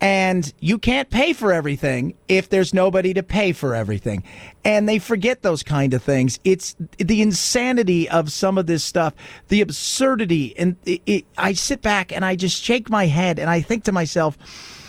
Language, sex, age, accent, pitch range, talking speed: English, male, 40-59, American, 155-215 Hz, 180 wpm